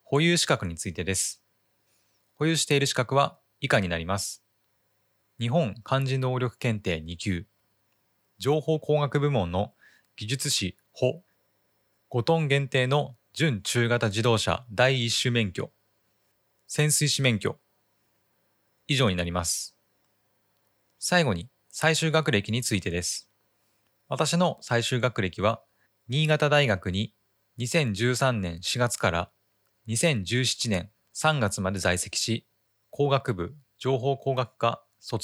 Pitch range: 100-130 Hz